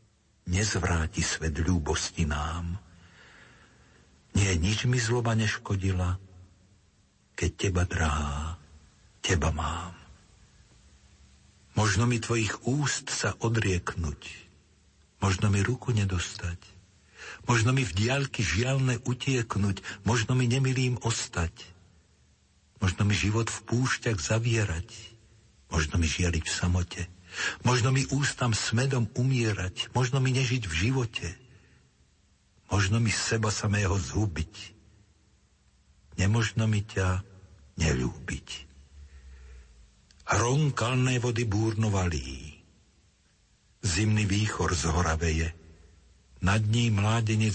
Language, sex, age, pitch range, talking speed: Slovak, male, 60-79, 85-110 Hz, 95 wpm